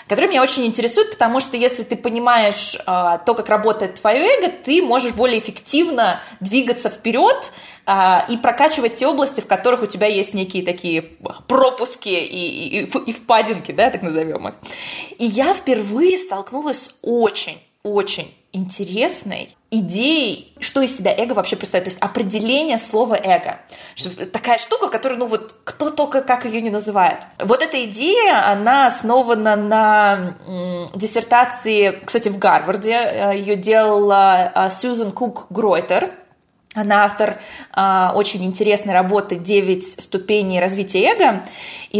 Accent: native